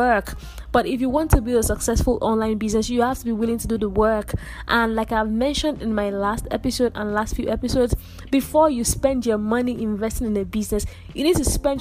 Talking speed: 225 wpm